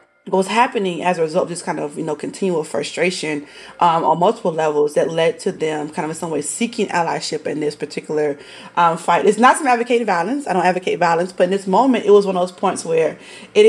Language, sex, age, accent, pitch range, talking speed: English, female, 30-49, American, 160-195 Hz, 240 wpm